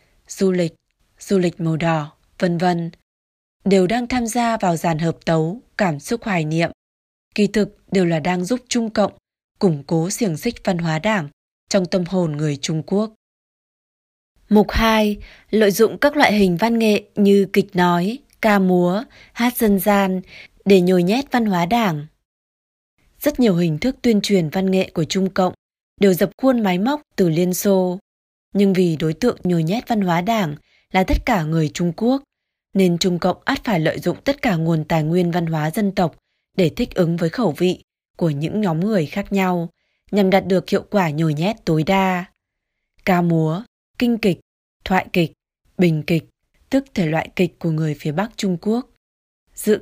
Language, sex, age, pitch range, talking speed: Vietnamese, female, 20-39, 170-210 Hz, 185 wpm